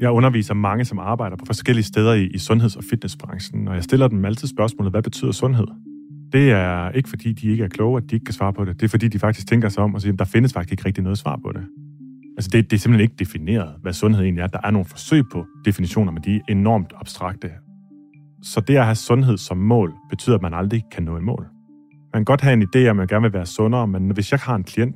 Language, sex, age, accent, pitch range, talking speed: Danish, male, 30-49, native, 95-120 Hz, 270 wpm